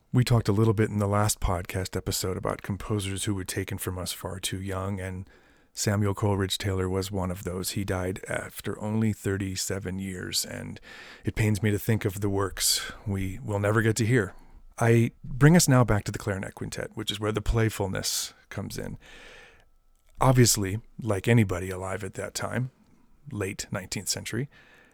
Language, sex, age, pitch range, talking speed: English, male, 30-49, 95-115 Hz, 180 wpm